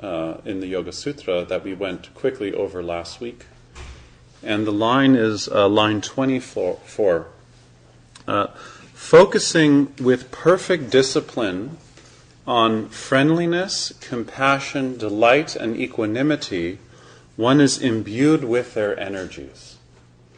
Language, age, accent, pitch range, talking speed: English, 30-49, American, 90-130 Hz, 110 wpm